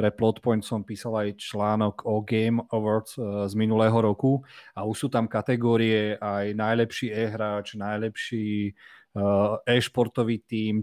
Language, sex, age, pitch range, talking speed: Slovak, male, 40-59, 110-120 Hz, 145 wpm